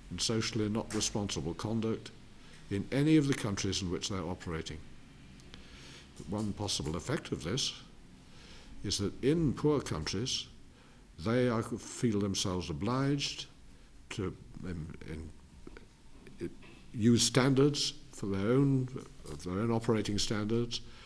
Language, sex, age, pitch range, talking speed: Italian, male, 60-79, 85-120 Hz, 130 wpm